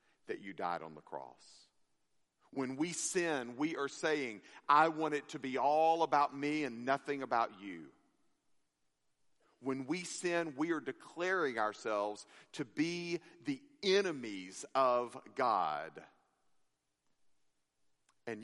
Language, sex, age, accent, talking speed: English, male, 50-69, American, 125 wpm